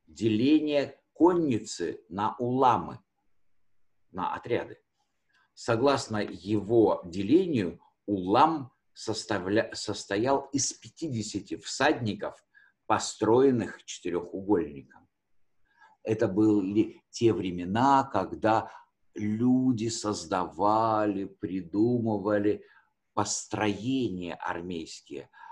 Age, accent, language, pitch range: 50-69, native, Russian, 100-140 Hz